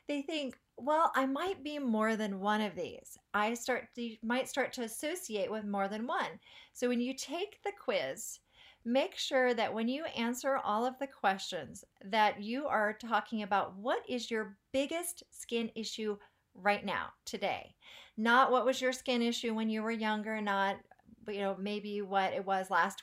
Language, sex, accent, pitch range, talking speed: English, female, American, 210-265 Hz, 180 wpm